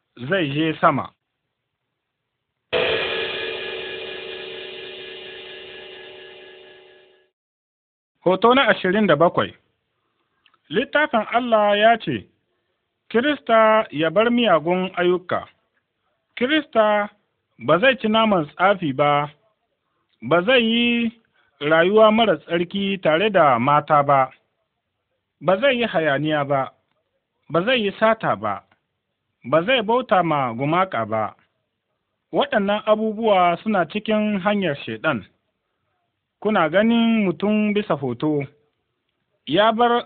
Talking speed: 80 wpm